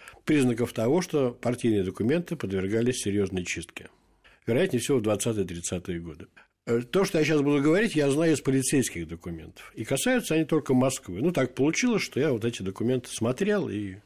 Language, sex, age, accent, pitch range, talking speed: Russian, male, 60-79, native, 105-160 Hz, 165 wpm